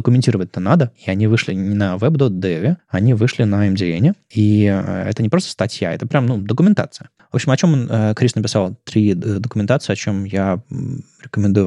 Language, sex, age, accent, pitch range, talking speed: Russian, male, 20-39, native, 100-125 Hz, 175 wpm